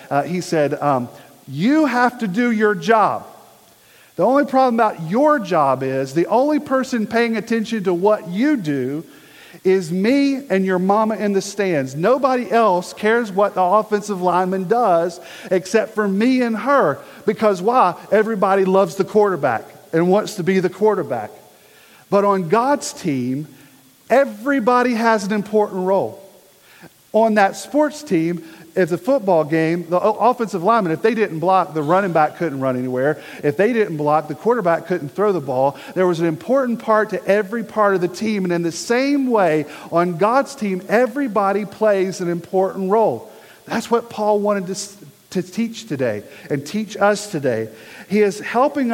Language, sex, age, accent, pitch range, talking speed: English, male, 40-59, American, 175-225 Hz, 170 wpm